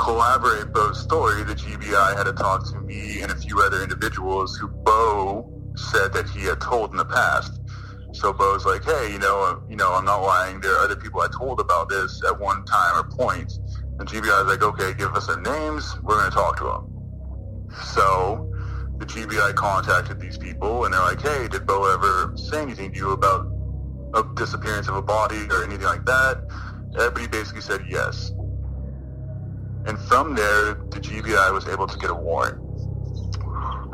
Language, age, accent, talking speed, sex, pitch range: English, 30-49, American, 185 wpm, male, 95-110 Hz